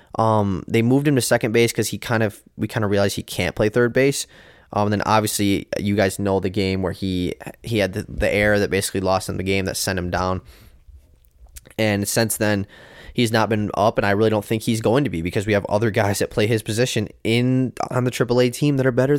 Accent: American